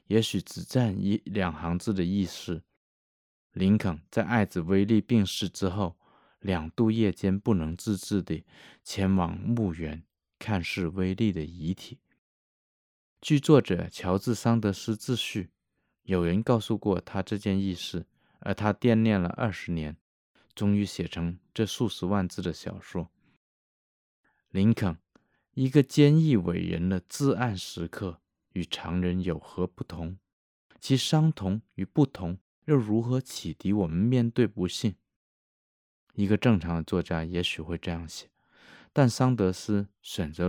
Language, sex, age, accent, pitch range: Chinese, male, 20-39, native, 85-110 Hz